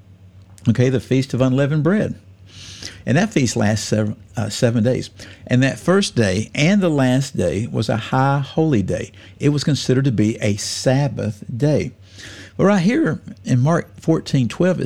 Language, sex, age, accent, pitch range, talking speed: English, male, 50-69, American, 100-130 Hz, 170 wpm